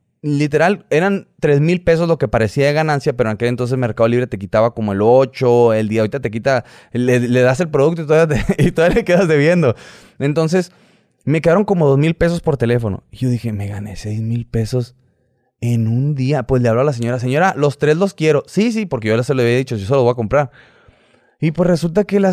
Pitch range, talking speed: 125-170 Hz, 235 wpm